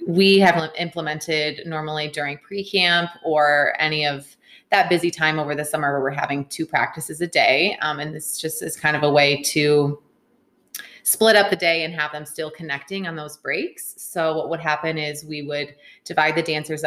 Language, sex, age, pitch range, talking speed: English, female, 20-39, 150-165 Hz, 190 wpm